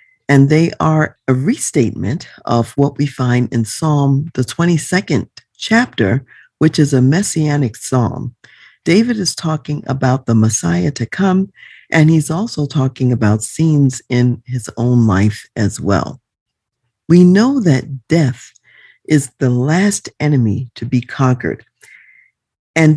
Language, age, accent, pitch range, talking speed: English, 50-69, American, 125-170 Hz, 135 wpm